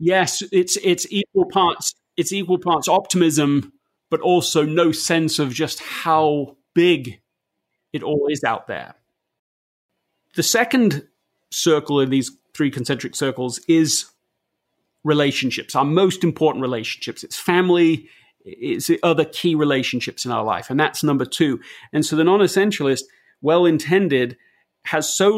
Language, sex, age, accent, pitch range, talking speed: English, male, 30-49, British, 135-175 Hz, 140 wpm